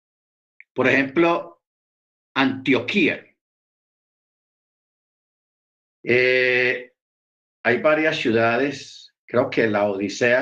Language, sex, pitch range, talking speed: Spanish, male, 110-145 Hz, 65 wpm